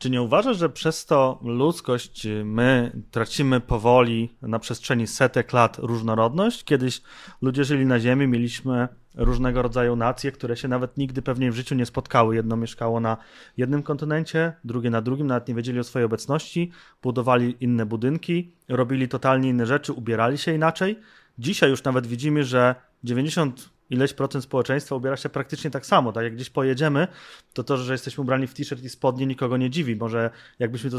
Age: 30-49